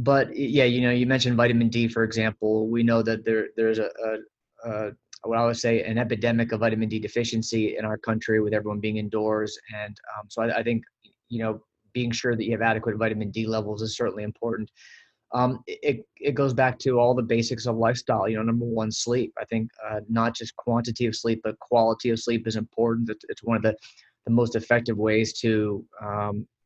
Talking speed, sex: 215 wpm, male